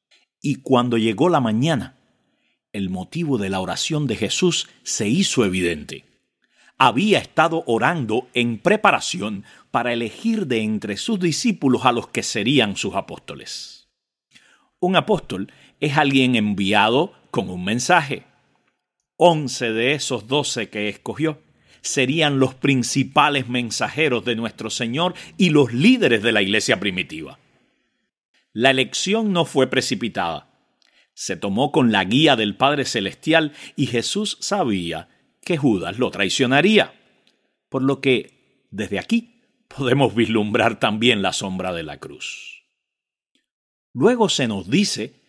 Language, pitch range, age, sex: Spanish, 115-175 Hz, 50-69, male